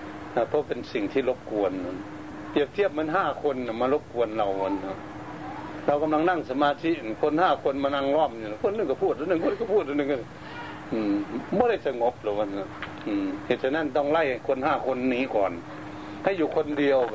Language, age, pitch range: Thai, 70-89, 115-150 Hz